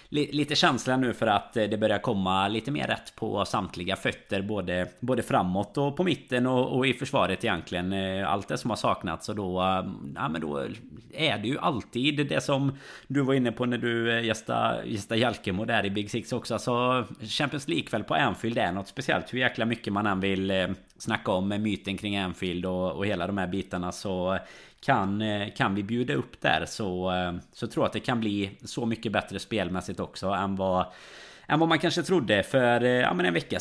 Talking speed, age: 200 wpm, 20-39